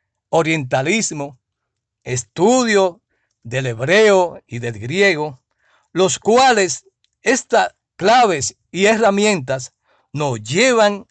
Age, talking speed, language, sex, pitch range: 60-79, 80 wpm, Spanish, male, 125-205 Hz